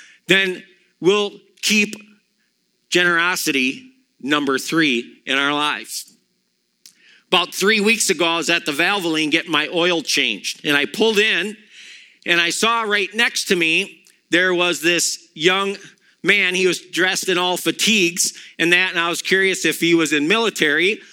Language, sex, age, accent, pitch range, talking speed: English, male, 50-69, American, 175-220 Hz, 155 wpm